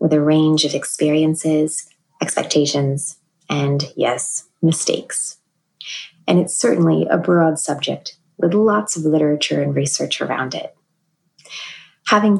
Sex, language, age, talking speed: female, English, 20-39, 115 wpm